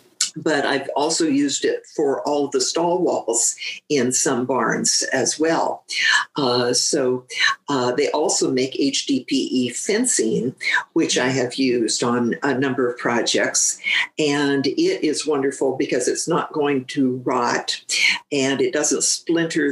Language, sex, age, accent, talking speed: English, female, 50-69, American, 140 wpm